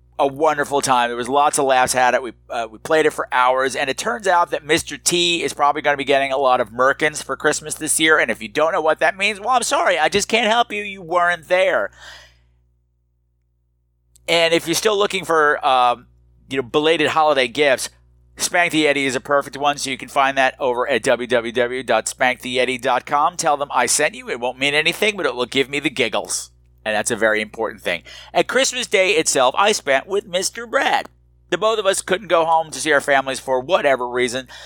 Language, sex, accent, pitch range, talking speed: English, male, American, 125-175 Hz, 225 wpm